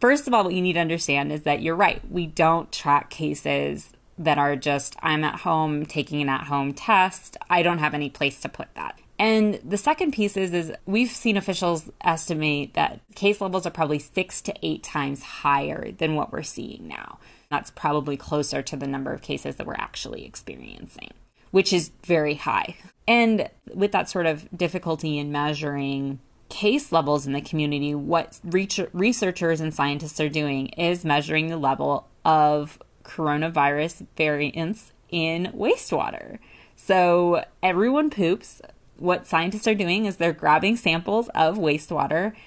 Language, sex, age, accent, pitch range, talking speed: English, female, 20-39, American, 145-185 Hz, 165 wpm